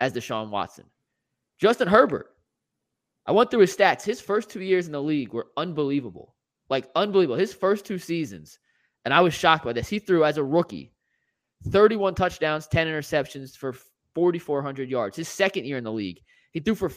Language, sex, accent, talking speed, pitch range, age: English, male, American, 185 wpm, 140-185 Hz, 20-39